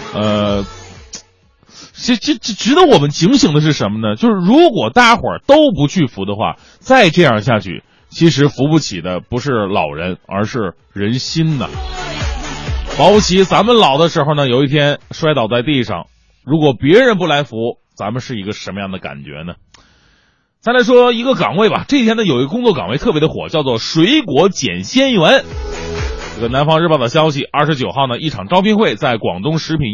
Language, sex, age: Chinese, male, 20-39